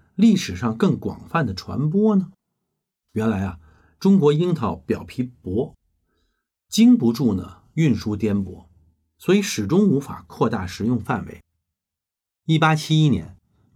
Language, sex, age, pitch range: Chinese, male, 50-69, 95-135 Hz